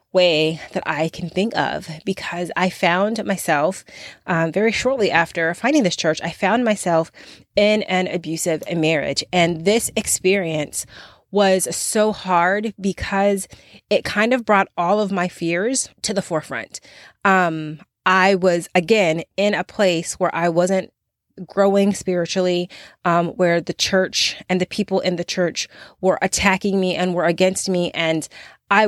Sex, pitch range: female, 170-200 Hz